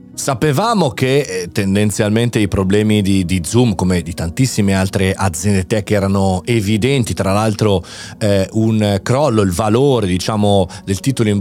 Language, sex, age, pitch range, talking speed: Italian, male, 30-49, 100-140 Hz, 145 wpm